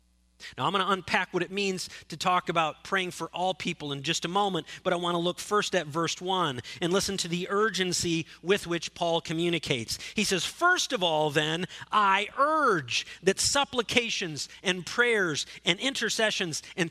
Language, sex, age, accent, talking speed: English, male, 40-59, American, 185 wpm